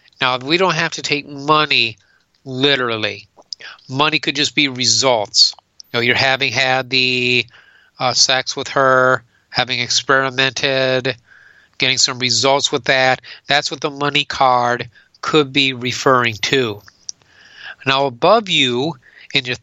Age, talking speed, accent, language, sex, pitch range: 40-59, 130 wpm, American, English, male, 125-145 Hz